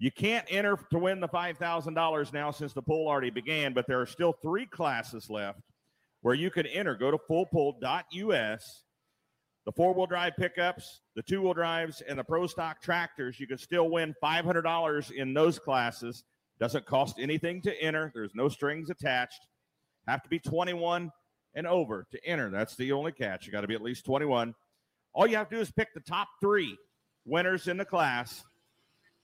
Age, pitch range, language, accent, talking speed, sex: 50-69, 130-170 Hz, English, American, 180 wpm, male